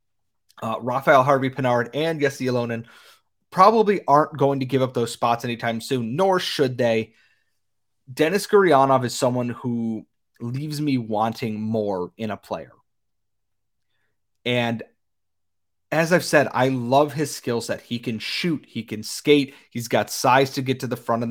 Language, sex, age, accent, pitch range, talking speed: English, male, 30-49, American, 110-145 Hz, 155 wpm